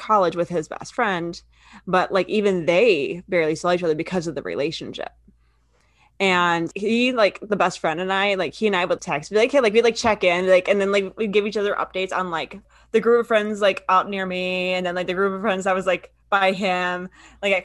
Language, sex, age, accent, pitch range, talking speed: English, female, 20-39, American, 180-215 Hz, 245 wpm